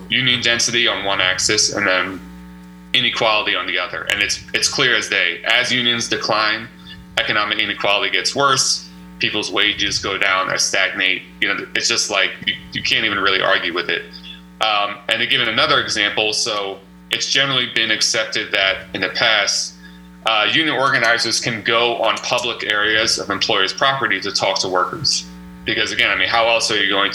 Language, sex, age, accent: English, male, 30-49, American